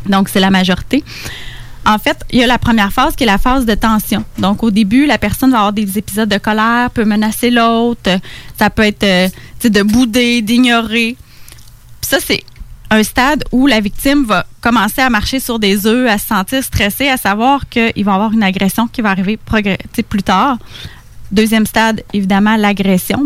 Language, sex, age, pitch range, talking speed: French, female, 20-39, 200-245 Hz, 190 wpm